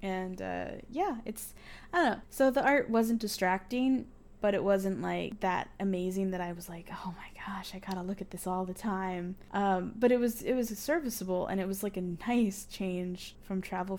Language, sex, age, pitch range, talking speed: English, female, 10-29, 185-225 Hz, 210 wpm